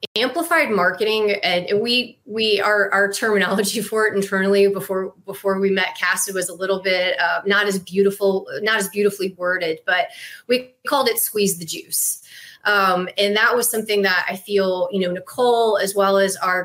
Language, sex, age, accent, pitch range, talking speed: English, female, 20-39, American, 185-215 Hz, 180 wpm